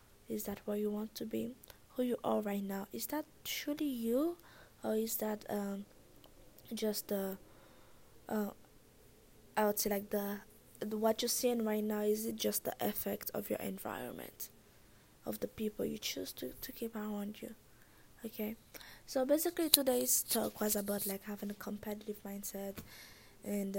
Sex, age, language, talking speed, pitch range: female, 20-39, English, 160 wpm, 200-235 Hz